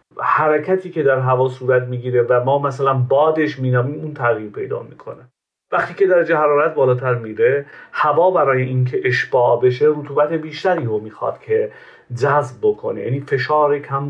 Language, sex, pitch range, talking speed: Persian, male, 130-185 Hz, 155 wpm